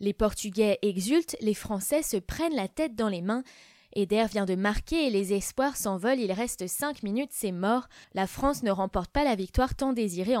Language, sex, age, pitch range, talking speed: French, female, 20-39, 195-265 Hz, 200 wpm